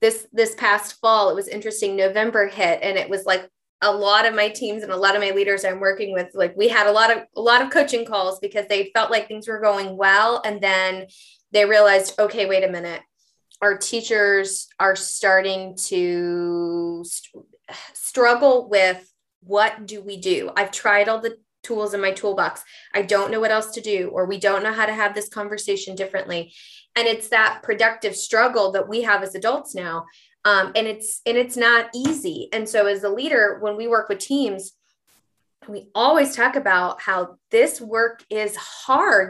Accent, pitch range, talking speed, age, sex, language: American, 195-230 Hz, 195 wpm, 20-39, female, English